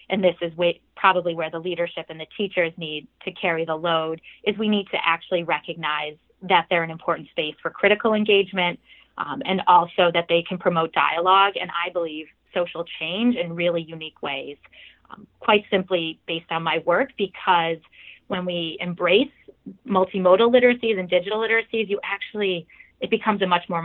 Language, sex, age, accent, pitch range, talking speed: English, female, 30-49, American, 165-195 Hz, 175 wpm